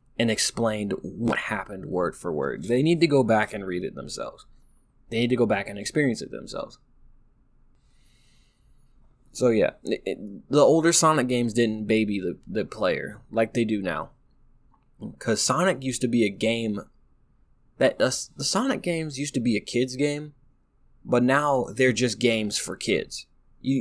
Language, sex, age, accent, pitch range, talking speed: English, male, 20-39, American, 115-140 Hz, 170 wpm